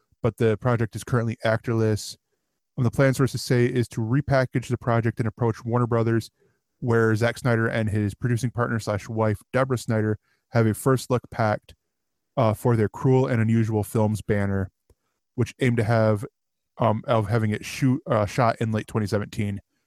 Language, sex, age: English, male, 20-39